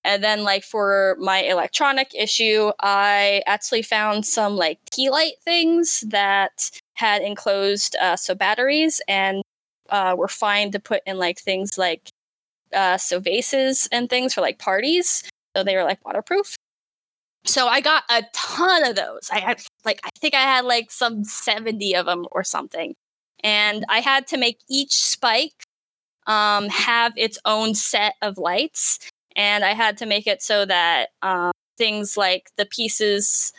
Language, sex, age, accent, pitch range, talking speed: English, female, 10-29, American, 200-270 Hz, 165 wpm